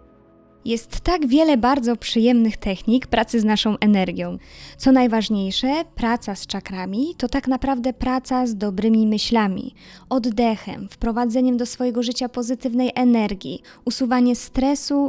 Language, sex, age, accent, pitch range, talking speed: Polish, female, 20-39, native, 210-250 Hz, 125 wpm